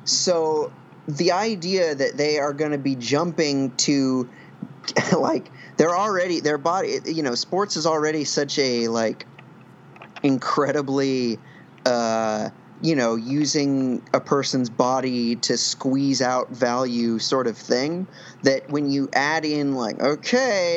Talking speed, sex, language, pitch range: 135 wpm, male, English, 130-170 Hz